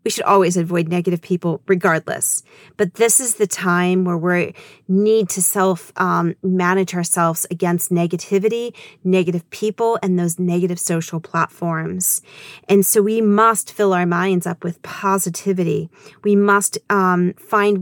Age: 40-59